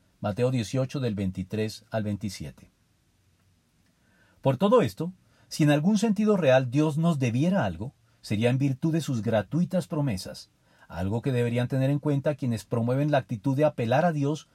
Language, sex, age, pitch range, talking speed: Spanish, male, 50-69, 110-150 Hz, 160 wpm